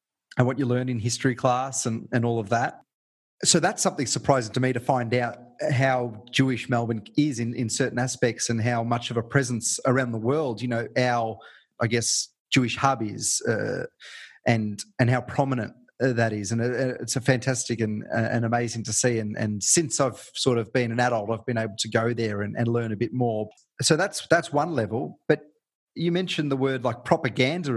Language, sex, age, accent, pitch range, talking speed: English, male, 30-49, Australian, 115-135 Hz, 205 wpm